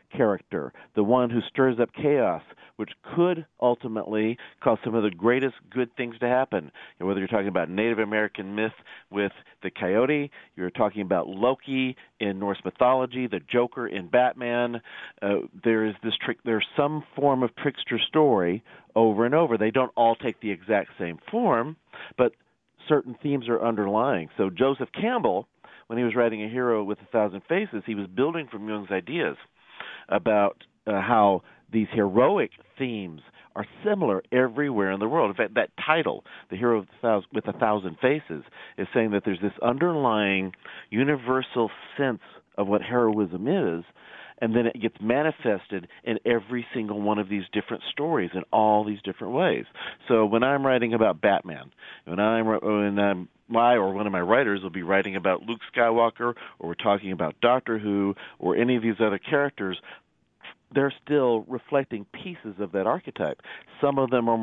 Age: 40-59